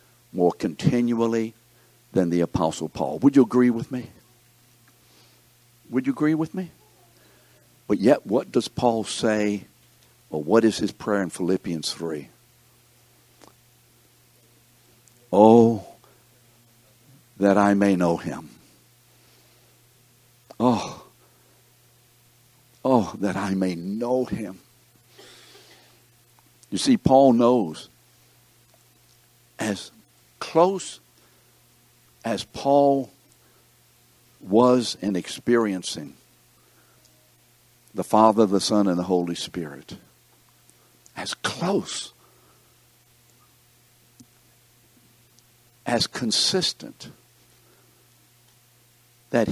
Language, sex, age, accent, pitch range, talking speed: English, male, 60-79, American, 105-120 Hz, 80 wpm